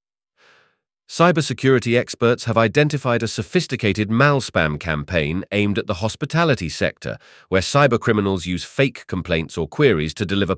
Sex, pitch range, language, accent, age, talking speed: male, 90-120 Hz, English, British, 40-59, 130 wpm